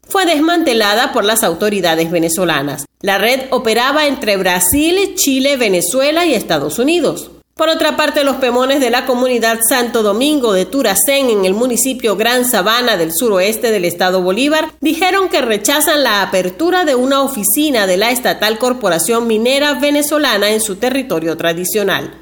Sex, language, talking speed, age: female, Spanish, 150 wpm, 40-59